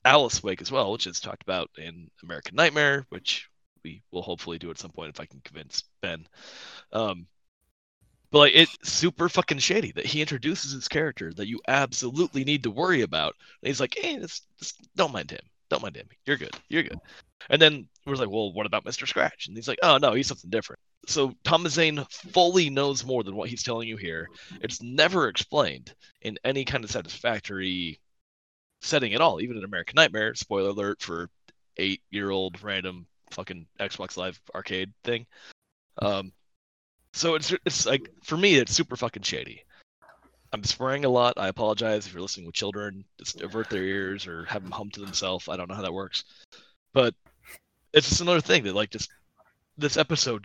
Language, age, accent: English, 30-49, American